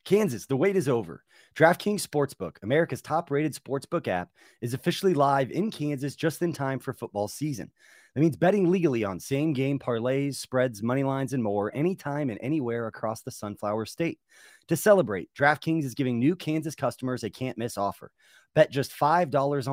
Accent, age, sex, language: American, 30-49, male, English